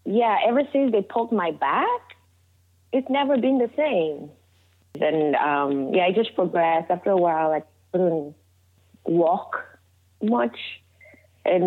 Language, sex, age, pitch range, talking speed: English, female, 20-39, 140-195 Hz, 135 wpm